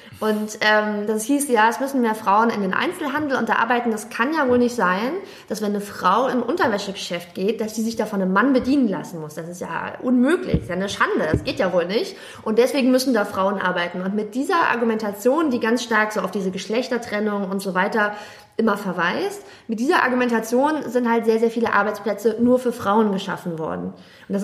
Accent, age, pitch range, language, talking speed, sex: German, 20-39, 200-250 Hz, German, 215 wpm, female